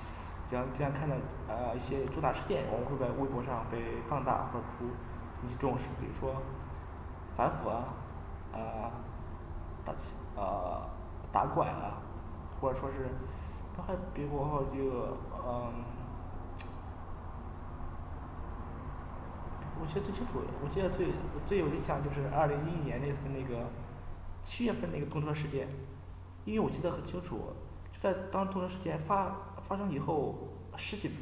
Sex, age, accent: male, 20-39, native